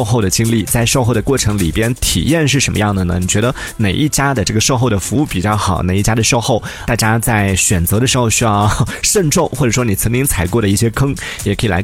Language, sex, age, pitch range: Chinese, male, 30-49, 100-135 Hz